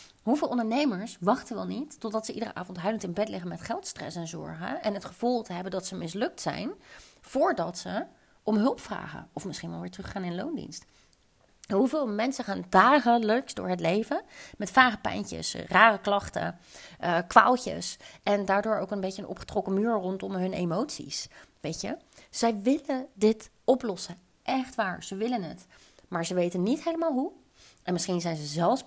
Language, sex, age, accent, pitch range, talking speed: Dutch, female, 30-49, Dutch, 180-235 Hz, 180 wpm